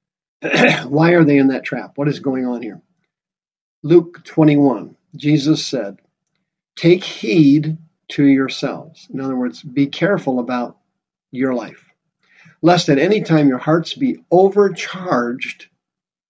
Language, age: English, 50-69